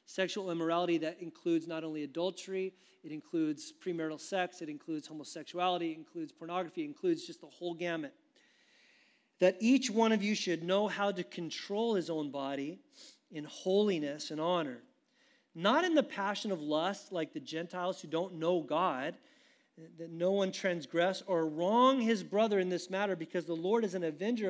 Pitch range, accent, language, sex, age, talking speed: 170-230 Hz, American, English, male, 40-59, 170 wpm